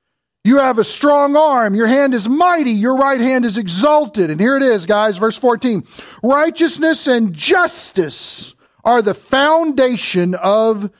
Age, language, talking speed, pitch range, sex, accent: 40-59, English, 155 wpm, 200-275 Hz, male, American